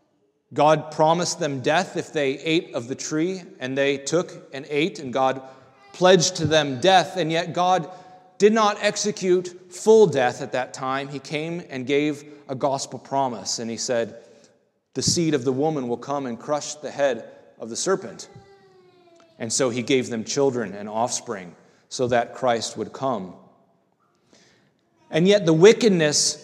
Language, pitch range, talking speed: English, 140-185 Hz, 165 wpm